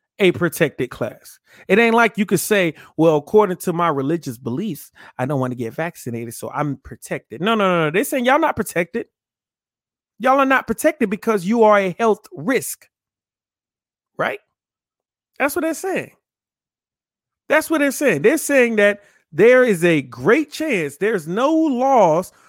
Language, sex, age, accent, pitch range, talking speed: English, male, 30-49, American, 165-240 Hz, 170 wpm